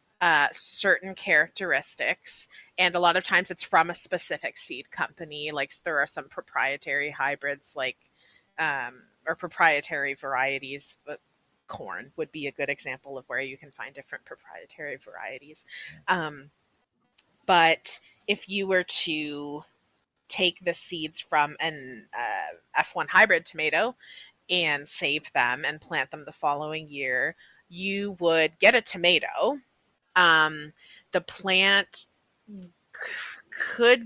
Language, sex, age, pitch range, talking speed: English, female, 30-49, 150-195 Hz, 130 wpm